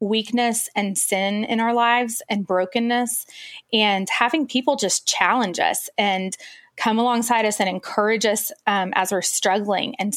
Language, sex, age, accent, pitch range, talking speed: English, female, 20-39, American, 190-230 Hz, 155 wpm